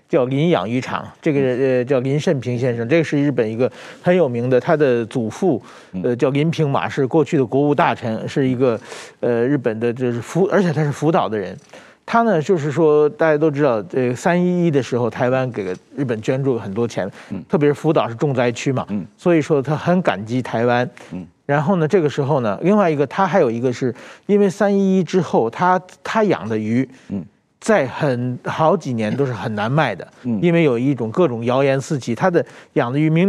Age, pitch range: 50-69, 125-160 Hz